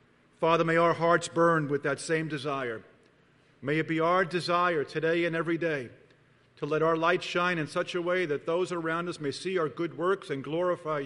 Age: 50-69